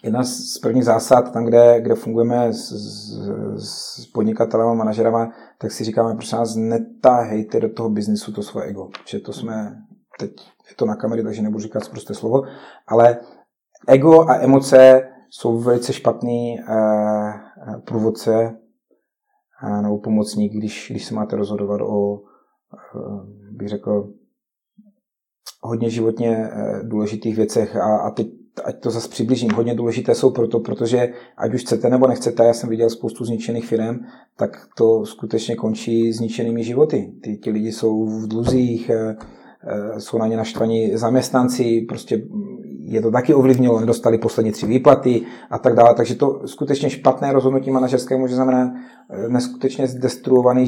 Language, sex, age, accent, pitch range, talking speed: Czech, male, 30-49, native, 110-125 Hz, 145 wpm